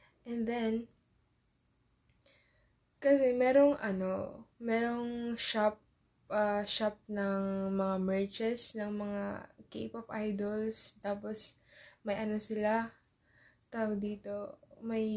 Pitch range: 200-235 Hz